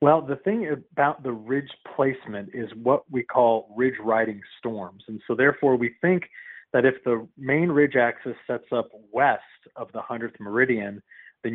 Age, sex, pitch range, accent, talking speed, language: 30-49, male, 115-145 Hz, American, 170 wpm, English